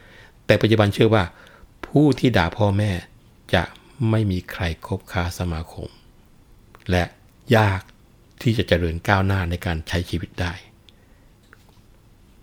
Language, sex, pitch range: Thai, male, 90-110 Hz